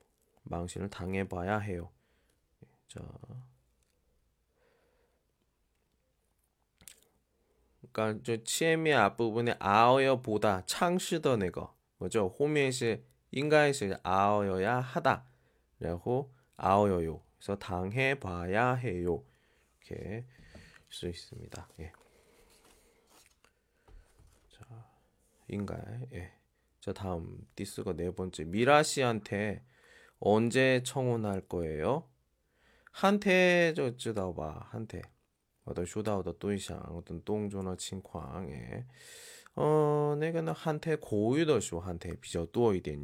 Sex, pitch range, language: male, 90-130 Hz, Chinese